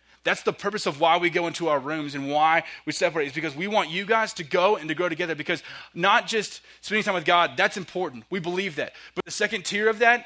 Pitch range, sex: 135-185 Hz, male